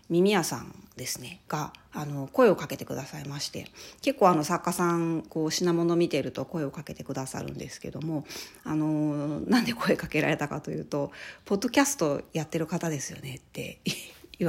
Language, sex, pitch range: Japanese, female, 150-185 Hz